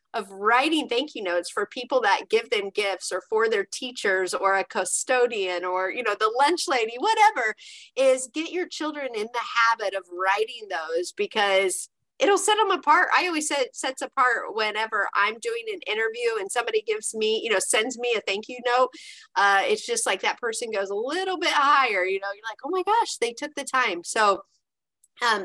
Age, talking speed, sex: 30-49, 205 wpm, female